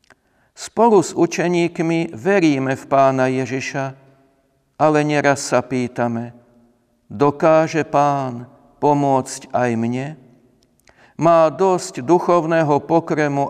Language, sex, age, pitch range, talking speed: Slovak, male, 50-69, 130-160 Hz, 90 wpm